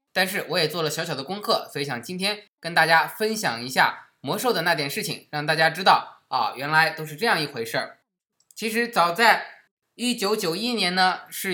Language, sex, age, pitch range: Chinese, male, 20-39, 155-215 Hz